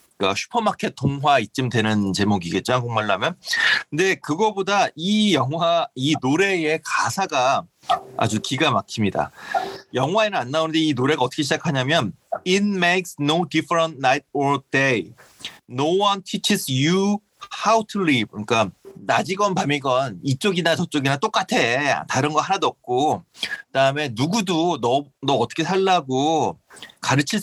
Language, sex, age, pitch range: Korean, male, 30-49, 130-190 Hz